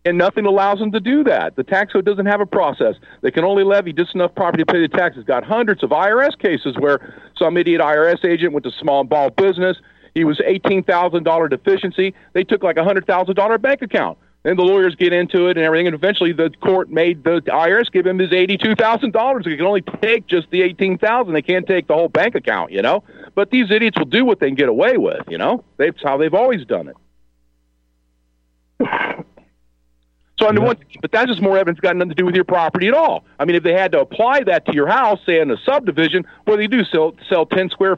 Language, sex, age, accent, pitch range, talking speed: English, male, 50-69, American, 165-215 Hz, 240 wpm